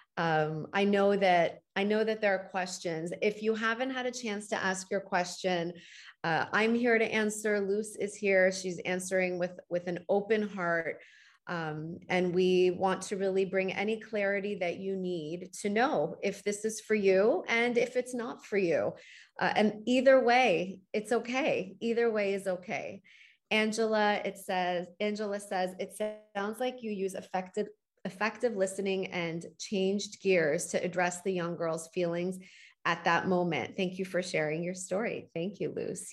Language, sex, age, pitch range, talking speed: English, female, 30-49, 180-215 Hz, 175 wpm